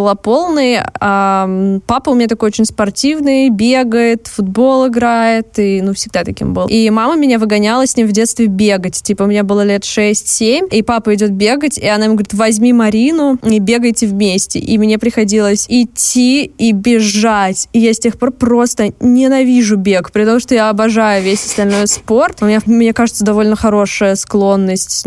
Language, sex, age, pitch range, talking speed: Russian, female, 20-39, 205-235 Hz, 175 wpm